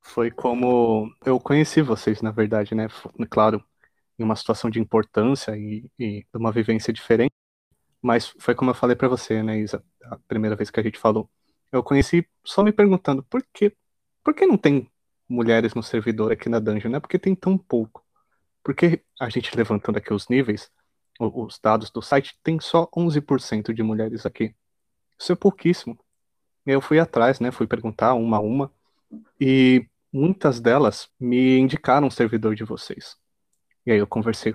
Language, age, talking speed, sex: Portuguese, 20-39, 170 wpm, male